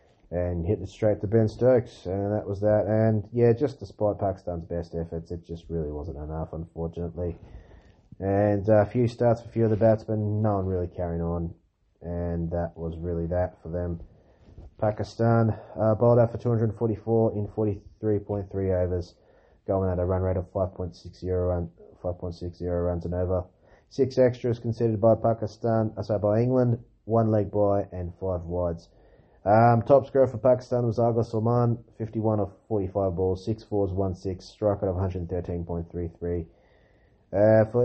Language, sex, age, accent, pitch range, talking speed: English, male, 30-49, Australian, 90-110 Hz, 160 wpm